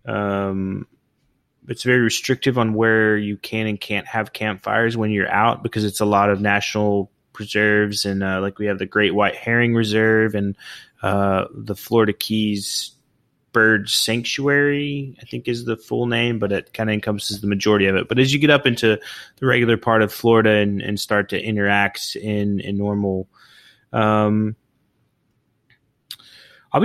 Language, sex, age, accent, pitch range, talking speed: English, male, 20-39, American, 105-120 Hz, 170 wpm